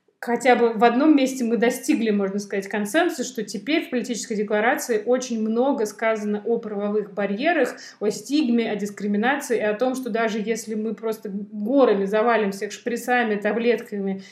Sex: female